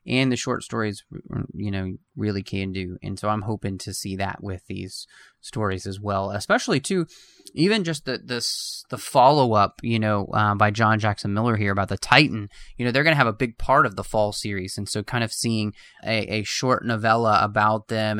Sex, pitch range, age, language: male, 100-125 Hz, 20-39, English